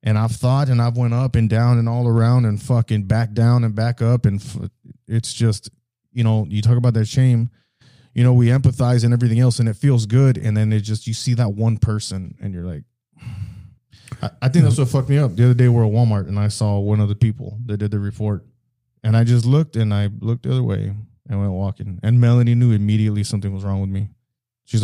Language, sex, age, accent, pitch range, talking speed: English, male, 20-39, American, 105-120 Hz, 240 wpm